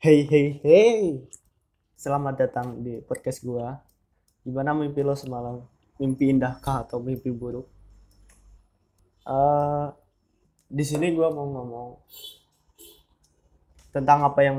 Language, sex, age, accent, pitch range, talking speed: Indonesian, male, 20-39, native, 120-145 Hz, 105 wpm